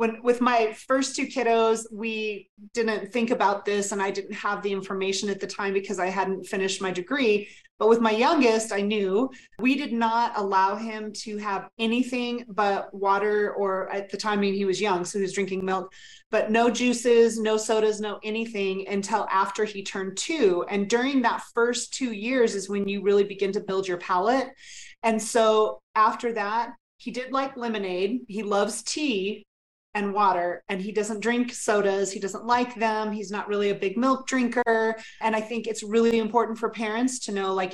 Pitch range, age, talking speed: 200-235 Hz, 30-49, 190 wpm